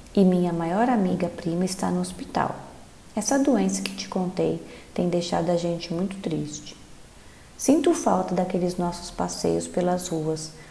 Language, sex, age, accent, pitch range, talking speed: Portuguese, female, 30-49, Brazilian, 175-235 Hz, 140 wpm